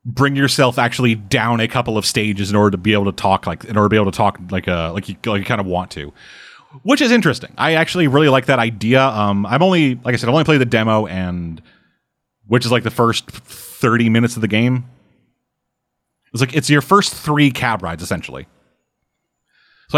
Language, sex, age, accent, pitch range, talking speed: English, male, 30-49, American, 105-135 Hz, 220 wpm